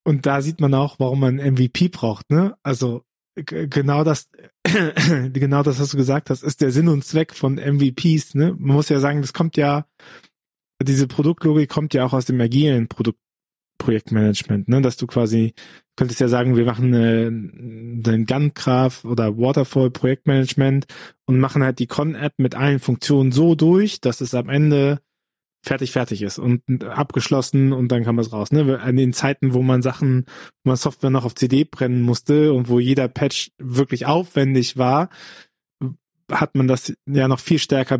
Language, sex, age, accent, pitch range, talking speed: German, male, 20-39, German, 125-155 Hz, 180 wpm